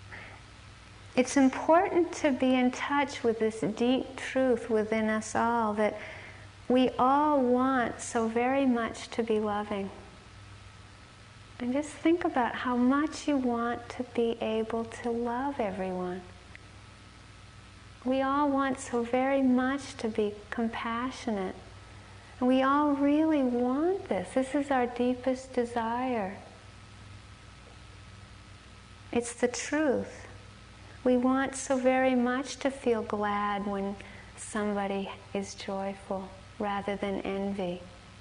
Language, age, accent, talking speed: English, 40-59, American, 120 wpm